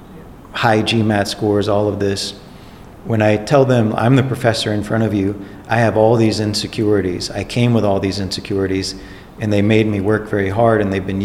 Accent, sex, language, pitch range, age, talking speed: American, male, English, 95-115 Hz, 40-59, 205 wpm